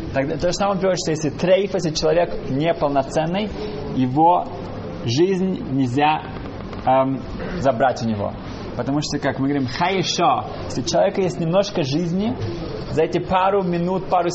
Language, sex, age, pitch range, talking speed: Russian, male, 20-39, 130-170 Hz, 135 wpm